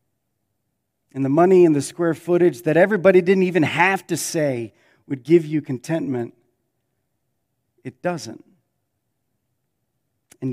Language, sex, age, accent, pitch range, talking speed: English, male, 40-59, American, 125-175 Hz, 120 wpm